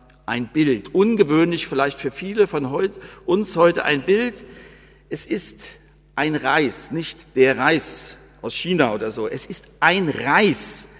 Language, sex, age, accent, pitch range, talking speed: German, male, 60-79, German, 140-185 Hz, 140 wpm